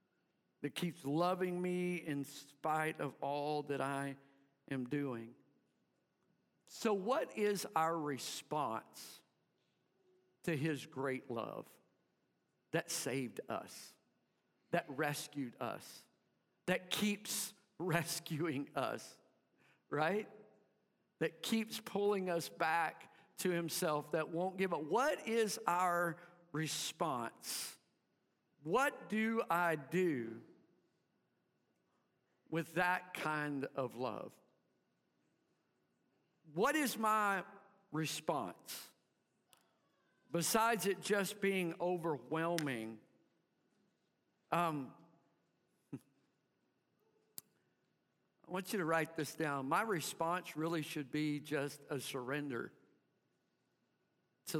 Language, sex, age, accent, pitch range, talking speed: English, male, 50-69, American, 145-185 Hz, 90 wpm